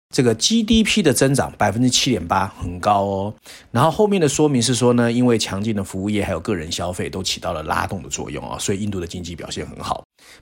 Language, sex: Chinese, male